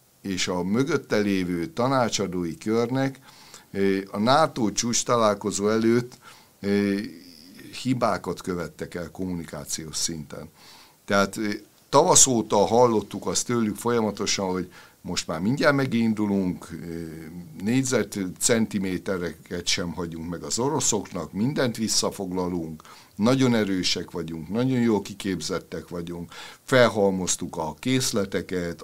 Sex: male